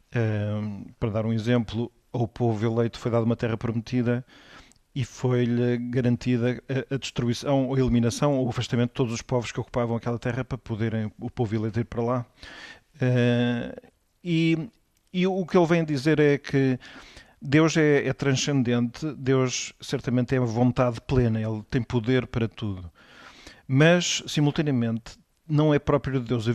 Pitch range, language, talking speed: 120-145 Hz, Portuguese, 160 wpm